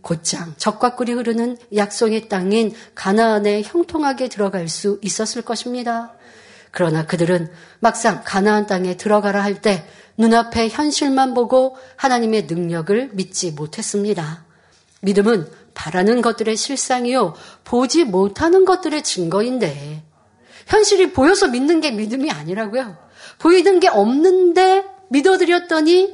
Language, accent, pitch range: Korean, native, 195-290 Hz